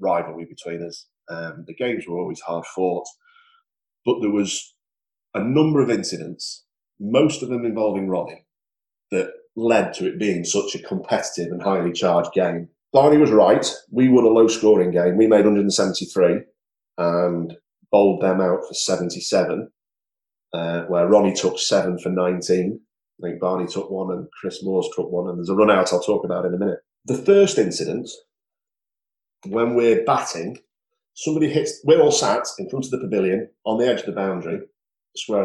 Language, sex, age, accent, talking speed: English, male, 30-49, British, 175 wpm